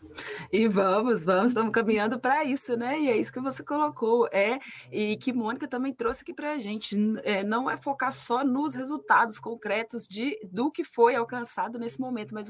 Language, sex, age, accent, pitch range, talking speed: Portuguese, female, 20-39, Brazilian, 195-240 Hz, 190 wpm